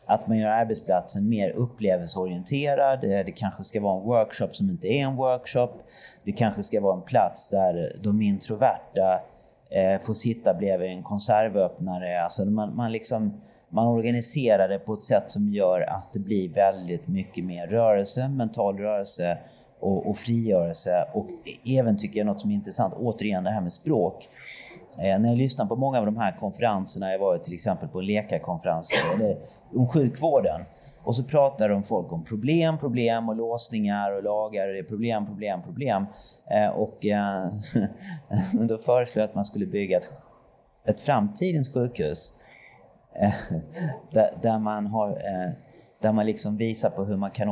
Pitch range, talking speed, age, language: 100-125 Hz, 160 wpm, 30-49, Swedish